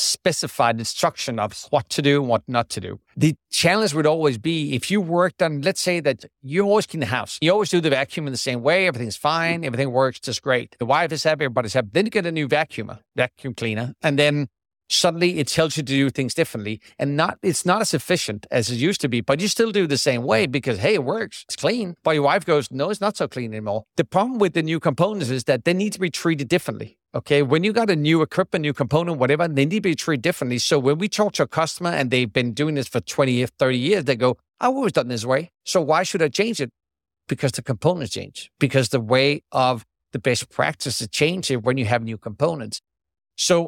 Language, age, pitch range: English, 50-69, 125-170 Hz